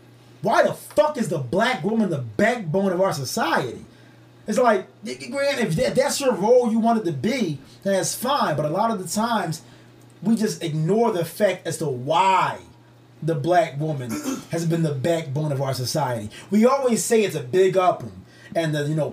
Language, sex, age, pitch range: English, male, 30-49, 160-230 Hz